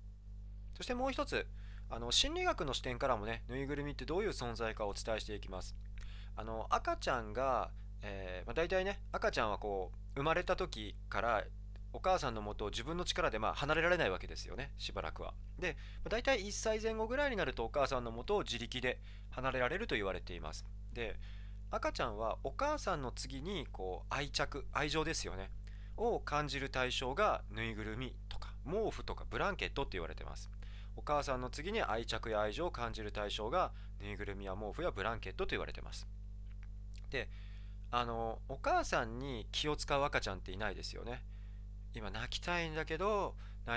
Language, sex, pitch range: Japanese, male, 100-140 Hz